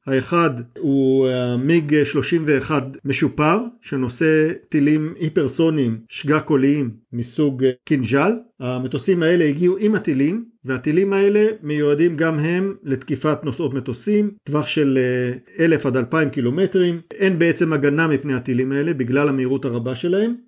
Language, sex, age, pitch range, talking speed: Hebrew, male, 50-69, 135-165 Hz, 125 wpm